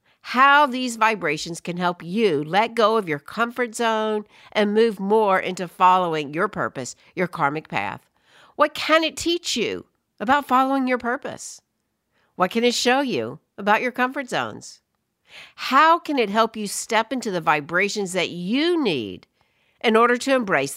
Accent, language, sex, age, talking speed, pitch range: American, English, female, 60-79, 160 wpm, 180-250 Hz